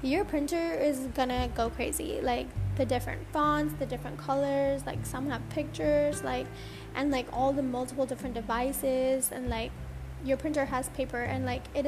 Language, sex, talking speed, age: English, female, 170 wpm, 10-29